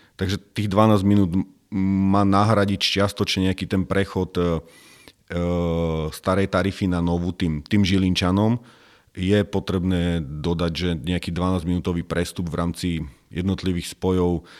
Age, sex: 40-59, male